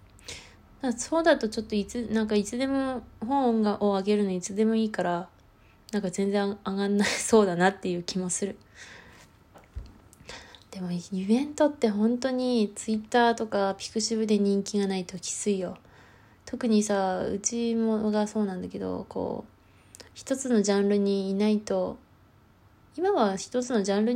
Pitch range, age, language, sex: 190-235 Hz, 20-39, Japanese, female